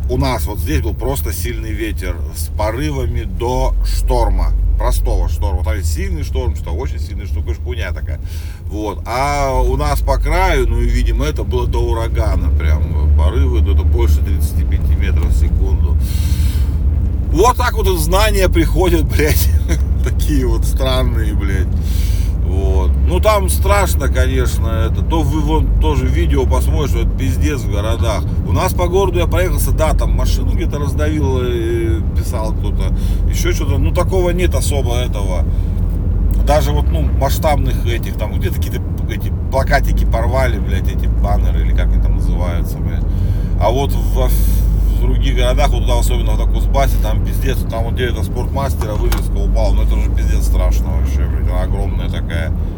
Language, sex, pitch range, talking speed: Russian, male, 75-90 Hz, 160 wpm